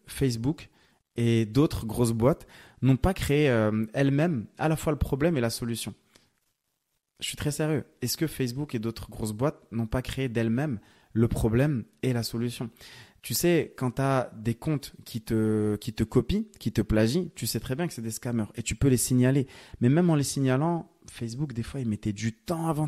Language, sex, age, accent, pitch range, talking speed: French, male, 20-39, French, 120-155 Hz, 205 wpm